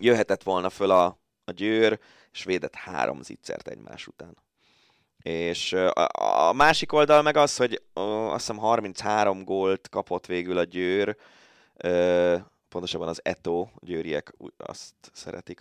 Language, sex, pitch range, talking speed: Hungarian, male, 85-105 Hz, 130 wpm